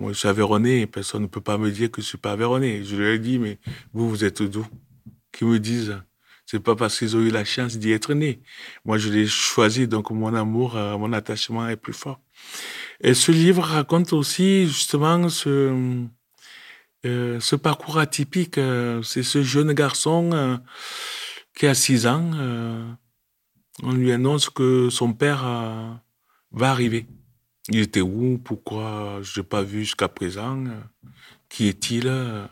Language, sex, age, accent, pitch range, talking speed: French, male, 20-39, French, 110-130 Hz, 170 wpm